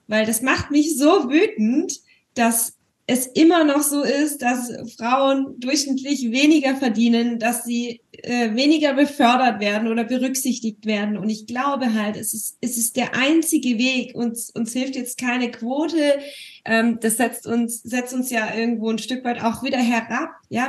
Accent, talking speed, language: German, 170 wpm, German